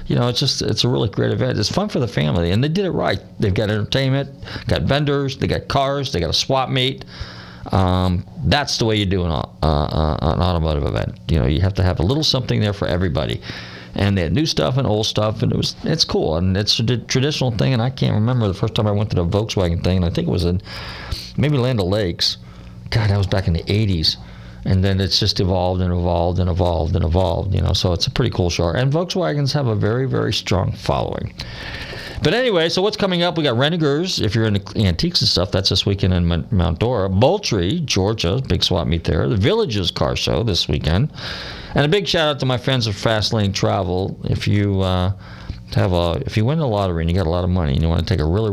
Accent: American